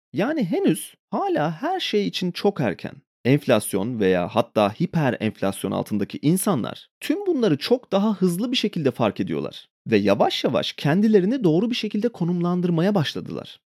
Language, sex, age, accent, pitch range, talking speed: Turkish, male, 30-49, native, 135-220 Hz, 145 wpm